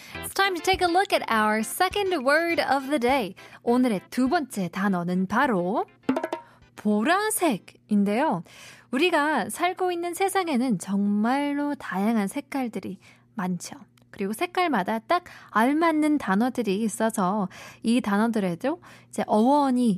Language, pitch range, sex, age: Korean, 200-305 Hz, female, 20-39